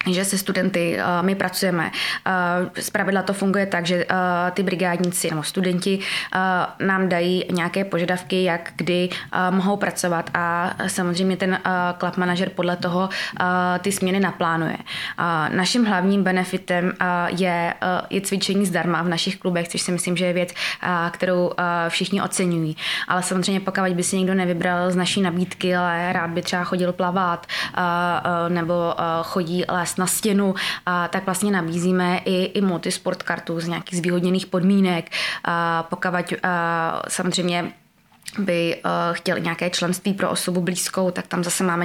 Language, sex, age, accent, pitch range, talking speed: Czech, female, 20-39, native, 175-190 Hz, 140 wpm